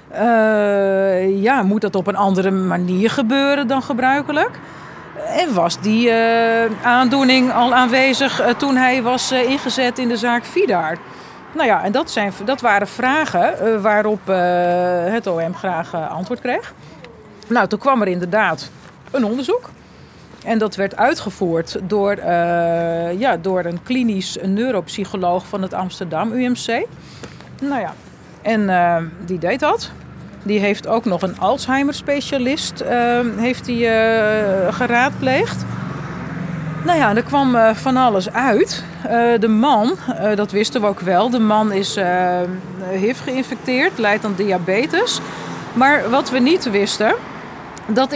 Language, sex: Dutch, female